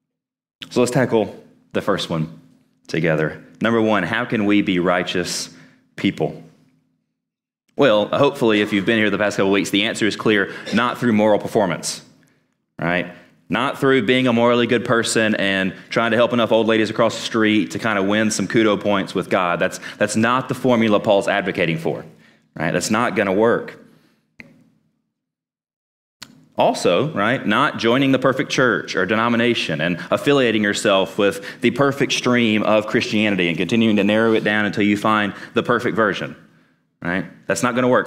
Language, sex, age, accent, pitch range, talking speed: English, male, 30-49, American, 100-120 Hz, 175 wpm